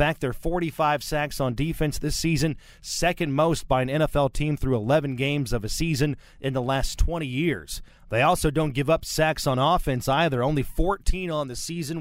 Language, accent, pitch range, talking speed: English, American, 125-160 Hz, 195 wpm